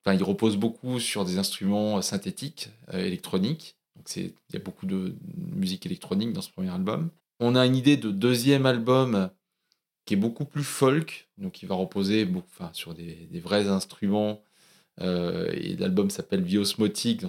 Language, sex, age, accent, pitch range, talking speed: French, male, 20-39, French, 100-135 Hz, 180 wpm